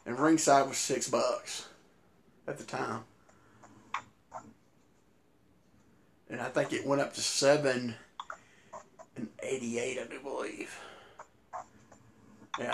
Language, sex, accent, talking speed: English, male, American, 110 wpm